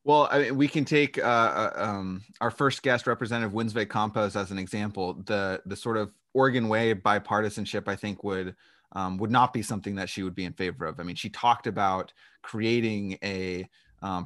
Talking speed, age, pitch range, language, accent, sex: 205 wpm, 30-49, 100-120 Hz, English, American, male